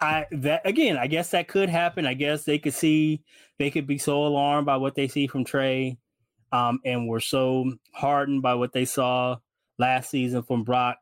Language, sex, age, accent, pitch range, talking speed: English, male, 20-39, American, 110-130 Hz, 200 wpm